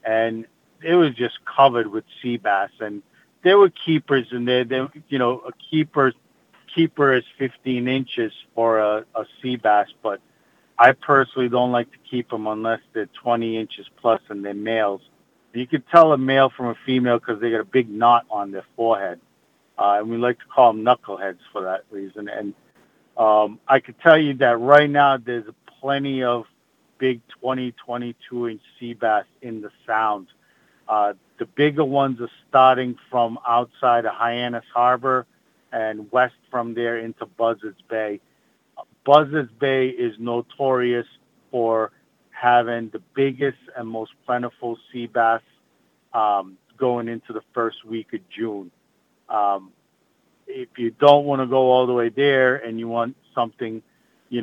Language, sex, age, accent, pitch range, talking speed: English, male, 50-69, American, 115-130 Hz, 165 wpm